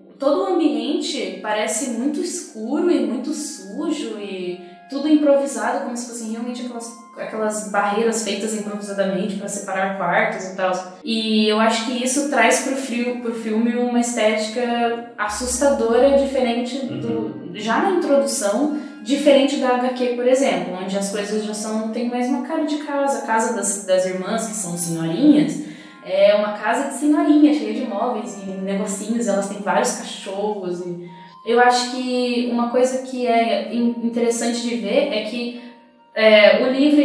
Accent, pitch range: Brazilian, 210-270 Hz